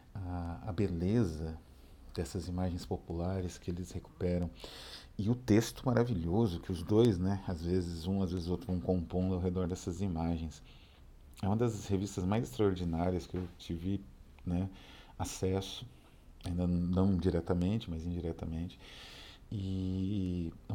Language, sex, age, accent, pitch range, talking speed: Portuguese, male, 40-59, Brazilian, 85-100 Hz, 140 wpm